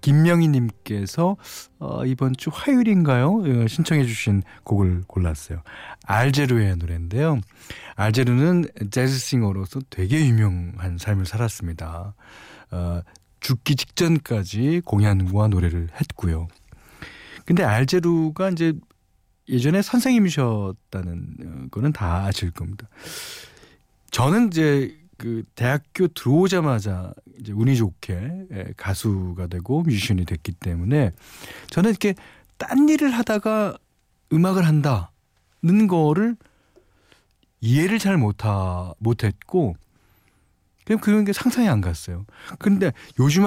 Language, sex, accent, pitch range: Korean, male, native, 95-155 Hz